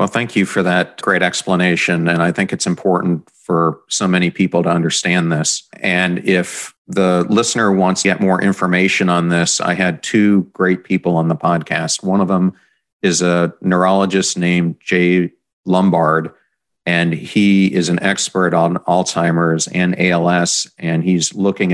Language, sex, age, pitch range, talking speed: English, male, 40-59, 85-95 Hz, 160 wpm